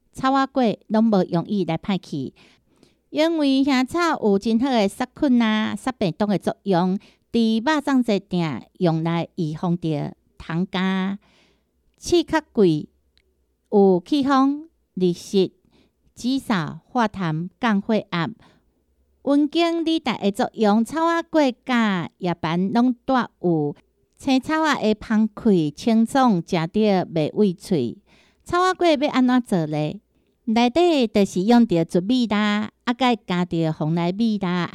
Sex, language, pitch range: female, Chinese, 180-245 Hz